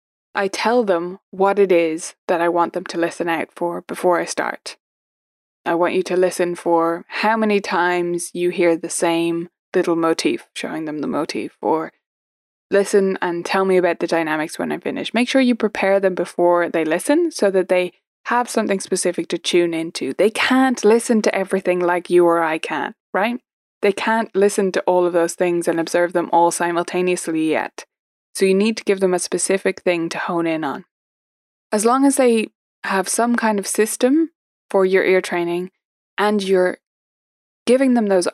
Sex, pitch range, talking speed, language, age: female, 170-200 Hz, 190 wpm, English, 20-39